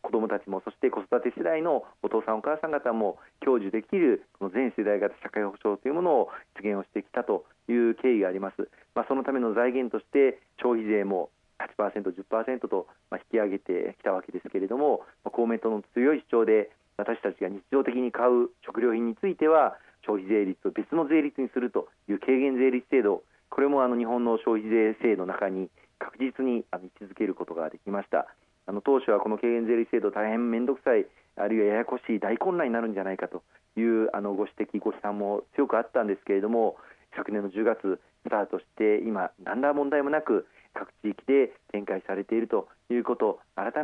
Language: Japanese